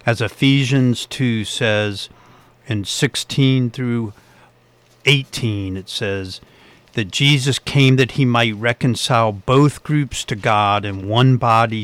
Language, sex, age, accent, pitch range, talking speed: English, male, 50-69, American, 105-125 Hz, 120 wpm